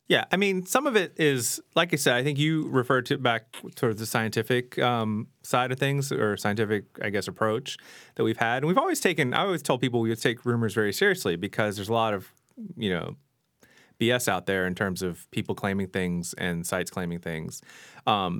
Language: English